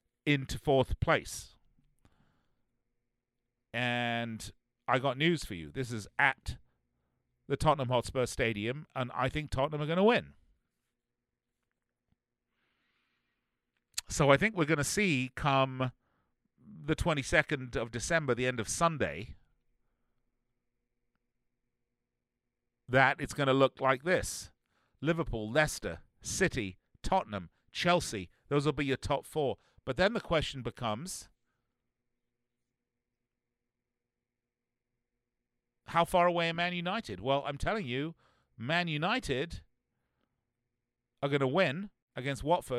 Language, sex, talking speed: English, male, 110 wpm